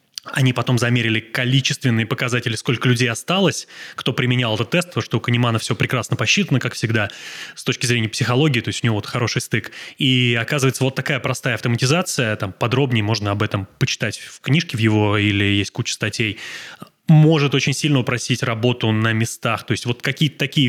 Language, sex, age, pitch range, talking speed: Russian, male, 20-39, 120-145 Hz, 185 wpm